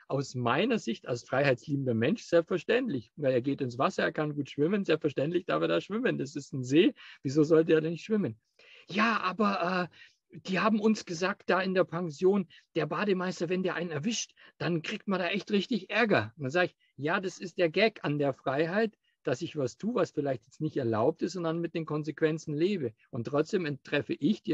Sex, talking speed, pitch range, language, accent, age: male, 215 wpm, 130-180 Hz, German, German, 50-69